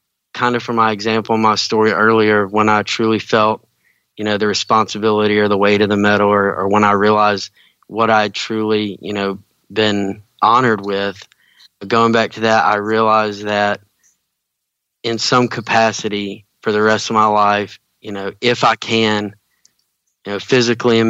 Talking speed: 170 wpm